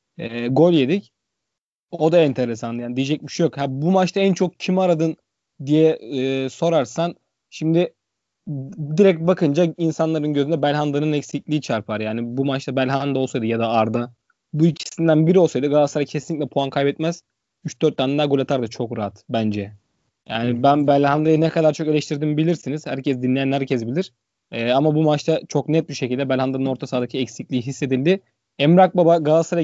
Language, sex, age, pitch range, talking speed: Turkish, male, 20-39, 130-160 Hz, 165 wpm